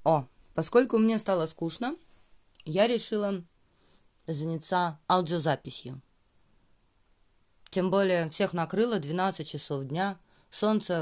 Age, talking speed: 30-49, 95 wpm